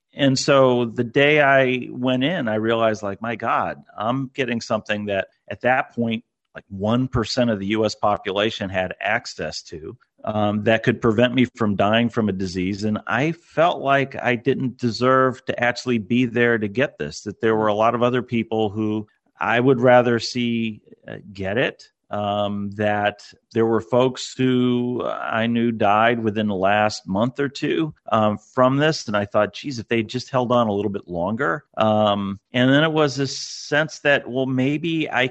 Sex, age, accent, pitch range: male, 40-59, American, 105-130 Hz